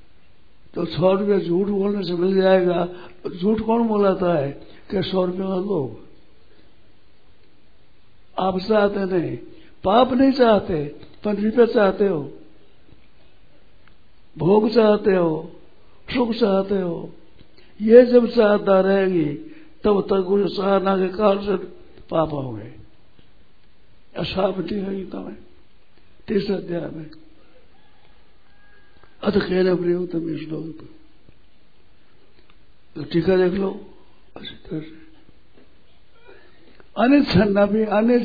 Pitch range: 165-210 Hz